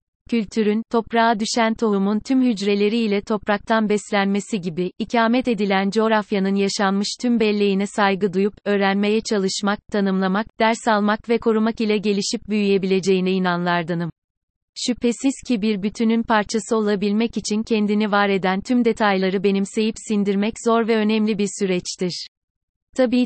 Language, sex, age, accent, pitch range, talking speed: Turkish, female, 30-49, native, 195-225 Hz, 125 wpm